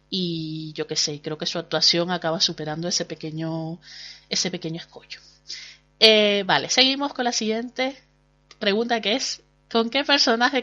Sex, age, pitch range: female, 30-49, 175-255 Hz